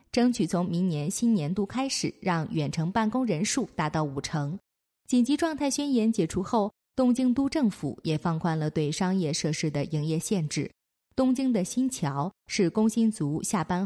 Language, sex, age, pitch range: Chinese, female, 20-39, 165-240 Hz